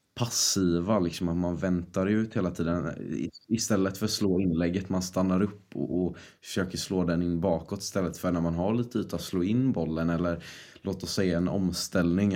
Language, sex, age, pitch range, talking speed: Swedish, male, 20-39, 85-100 Hz, 195 wpm